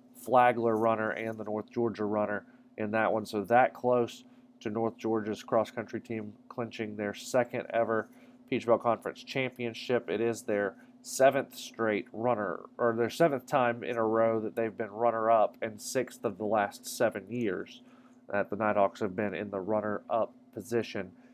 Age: 40-59